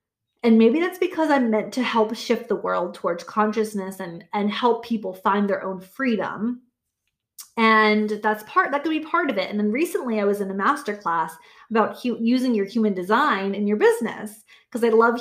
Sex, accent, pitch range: female, American, 205-260 Hz